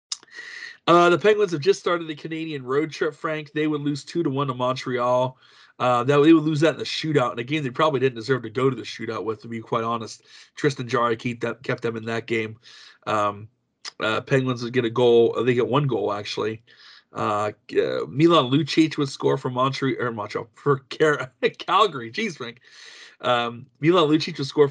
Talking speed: 200 wpm